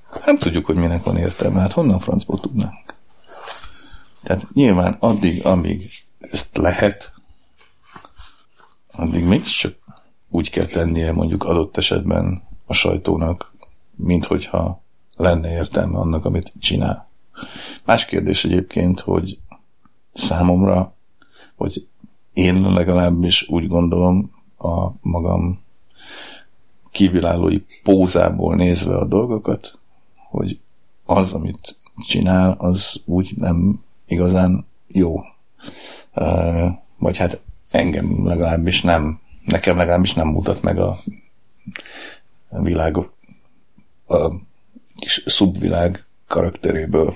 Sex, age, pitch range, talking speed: male, 50-69, 85-95 Hz, 95 wpm